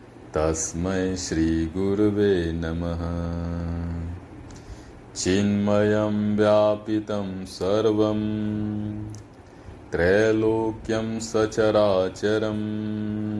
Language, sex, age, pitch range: Hindi, male, 30-49, 90-105 Hz